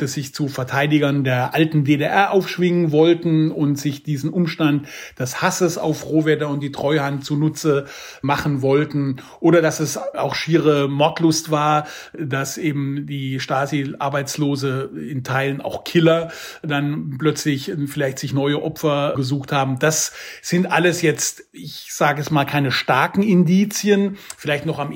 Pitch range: 140-160 Hz